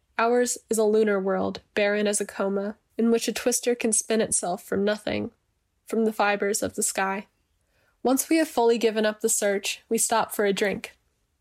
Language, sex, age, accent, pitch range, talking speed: English, female, 10-29, American, 205-230 Hz, 195 wpm